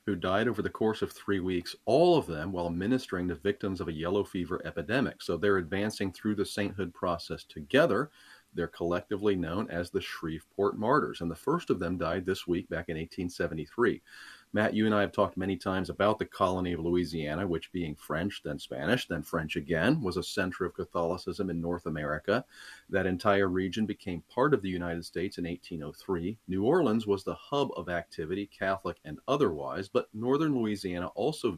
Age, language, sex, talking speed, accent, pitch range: 40-59, English, male, 190 wpm, American, 85-105 Hz